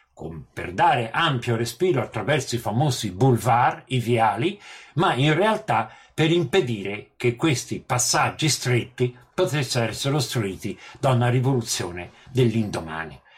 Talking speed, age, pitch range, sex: 115 wpm, 50-69, 115-145 Hz, male